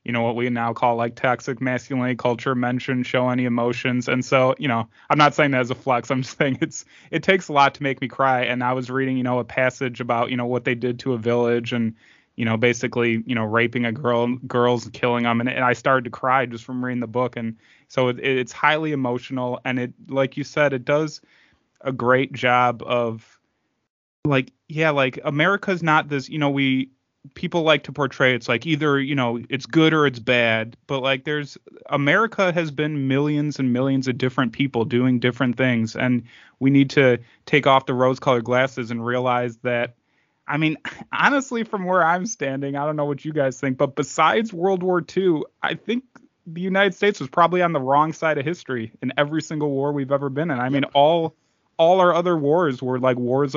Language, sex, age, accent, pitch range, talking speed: English, male, 20-39, American, 125-150 Hz, 220 wpm